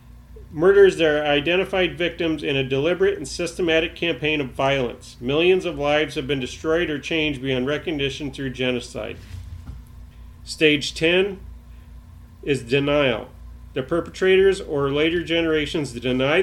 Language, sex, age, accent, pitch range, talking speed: English, male, 40-59, American, 115-155 Hz, 130 wpm